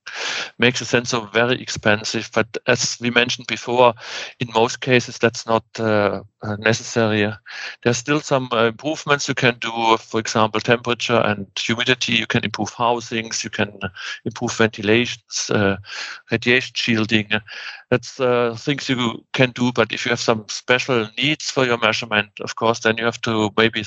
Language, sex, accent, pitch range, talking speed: English, male, German, 110-120 Hz, 160 wpm